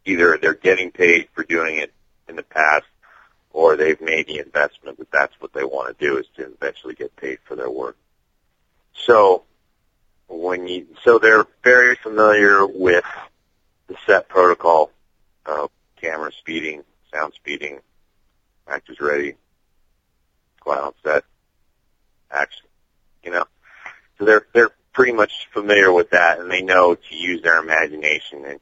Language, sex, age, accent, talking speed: English, male, 40-59, American, 145 wpm